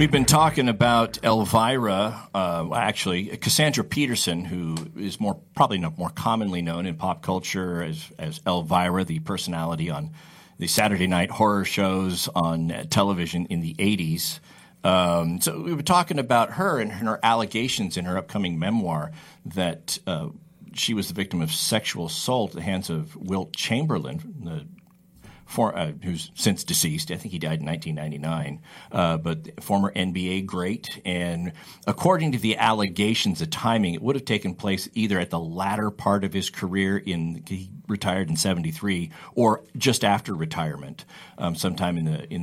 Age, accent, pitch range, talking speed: 40-59, American, 90-130 Hz, 165 wpm